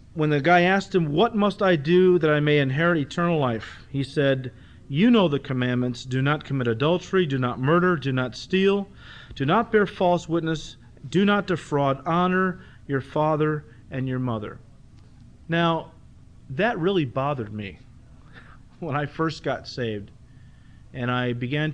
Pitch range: 125-170 Hz